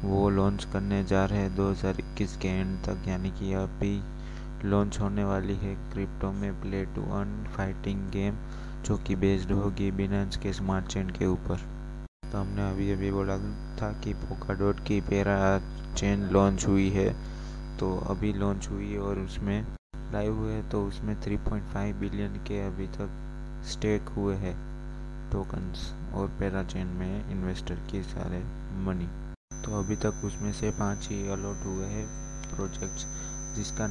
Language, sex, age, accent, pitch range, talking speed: Hindi, male, 20-39, native, 95-105 Hz, 155 wpm